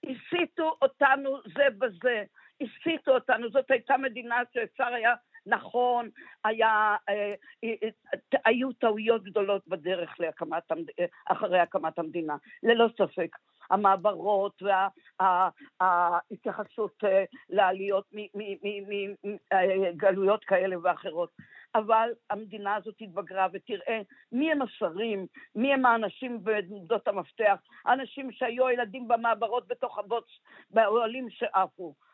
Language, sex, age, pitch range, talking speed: Hebrew, female, 50-69, 200-250 Hz, 95 wpm